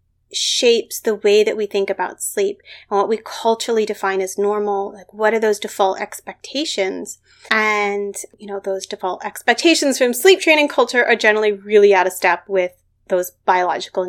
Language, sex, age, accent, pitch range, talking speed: English, female, 30-49, American, 195-280 Hz, 170 wpm